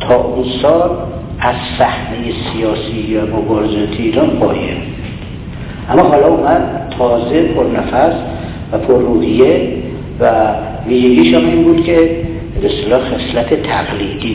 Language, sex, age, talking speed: Persian, male, 60-79, 110 wpm